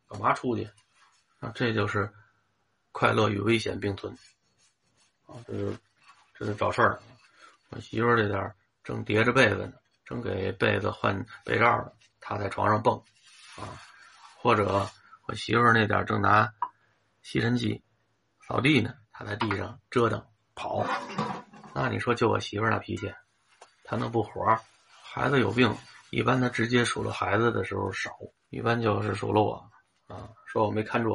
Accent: native